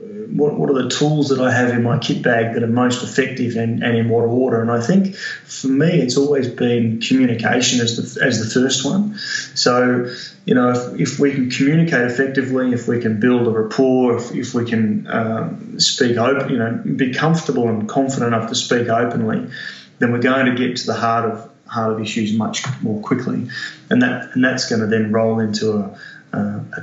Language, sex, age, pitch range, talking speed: English, male, 20-39, 115-130 Hz, 210 wpm